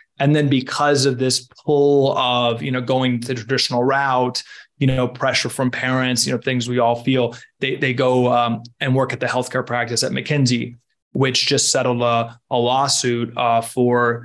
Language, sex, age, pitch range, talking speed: English, male, 20-39, 120-135 Hz, 185 wpm